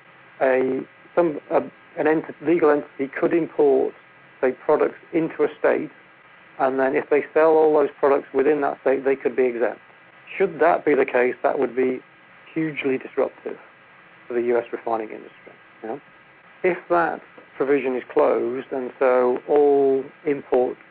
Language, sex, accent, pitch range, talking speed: English, male, British, 125-145 Hz, 160 wpm